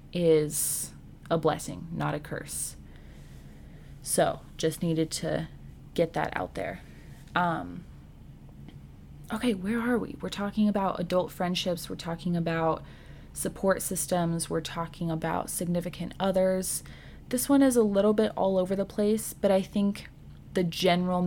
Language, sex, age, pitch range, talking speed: English, female, 20-39, 160-185 Hz, 140 wpm